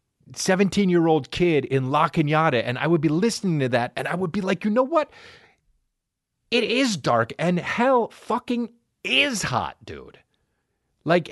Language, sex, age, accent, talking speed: English, male, 40-59, American, 160 wpm